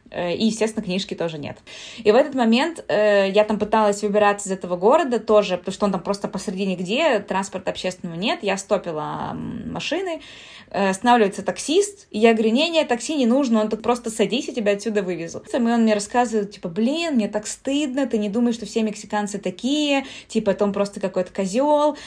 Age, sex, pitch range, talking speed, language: 20-39, female, 200-255 Hz, 195 wpm, Russian